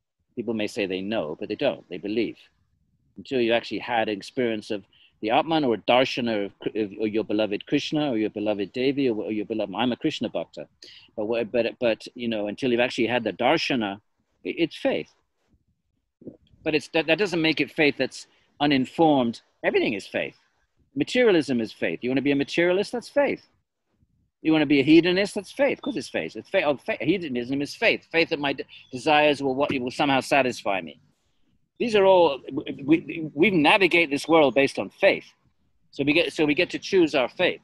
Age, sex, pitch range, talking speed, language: 50-69, male, 110-150 Hz, 195 wpm, English